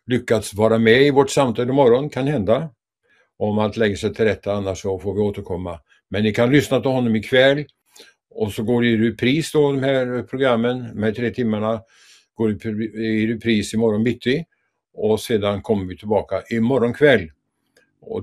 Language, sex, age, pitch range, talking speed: English, male, 60-79, 105-125 Hz, 185 wpm